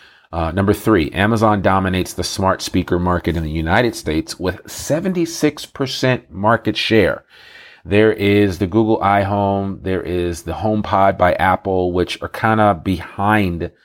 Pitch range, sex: 90-105 Hz, male